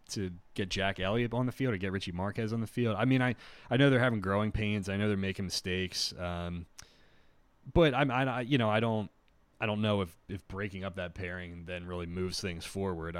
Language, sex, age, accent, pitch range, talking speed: English, male, 30-49, American, 85-105 Hz, 225 wpm